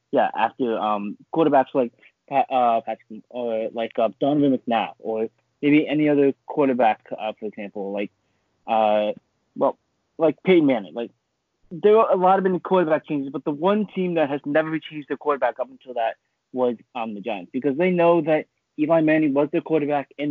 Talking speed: 185 wpm